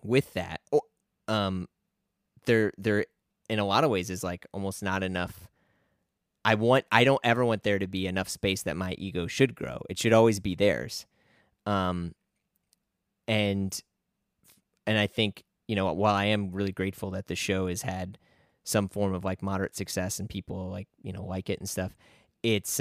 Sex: male